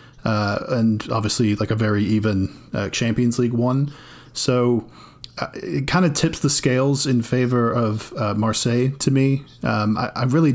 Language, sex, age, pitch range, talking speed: English, male, 20-39, 115-135 Hz, 170 wpm